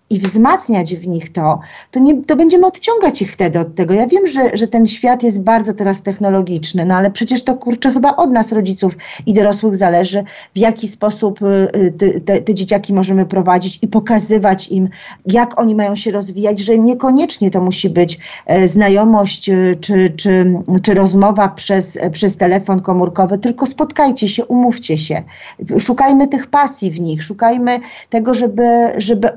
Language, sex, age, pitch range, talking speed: Polish, female, 40-59, 180-225 Hz, 160 wpm